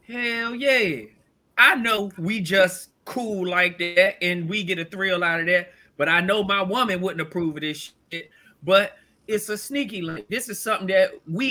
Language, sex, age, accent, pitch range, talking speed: English, male, 20-39, American, 175-225 Hz, 195 wpm